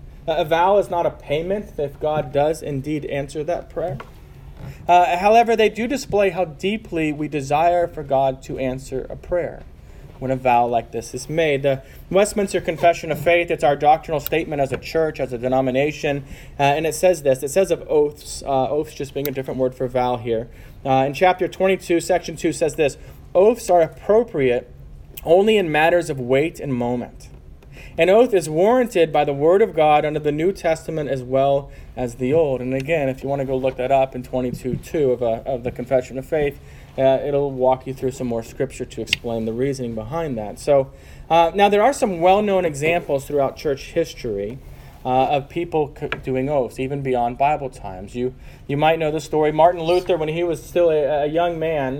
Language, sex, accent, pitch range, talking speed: English, male, American, 130-170 Hz, 200 wpm